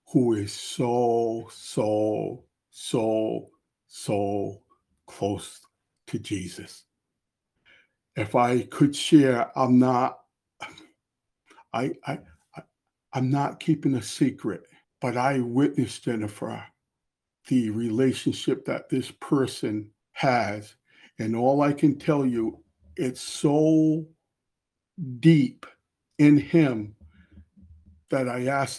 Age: 60-79